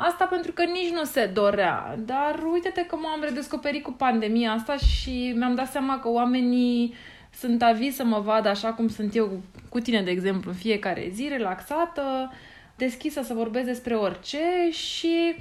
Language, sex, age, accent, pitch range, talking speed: Romanian, female, 20-39, native, 210-275 Hz, 170 wpm